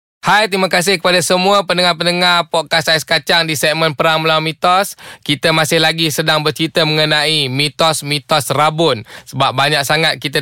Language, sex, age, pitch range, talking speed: Malay, male, 20-39, 145-170 Hz, 150 wpm